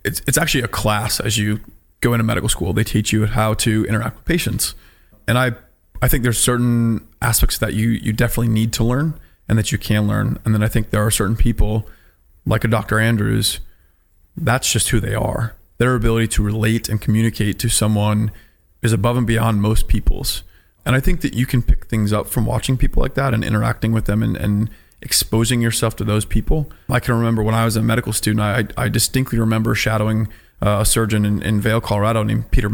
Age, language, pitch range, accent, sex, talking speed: 20-39, English, 105-115 Hz, American, male, 215 wpm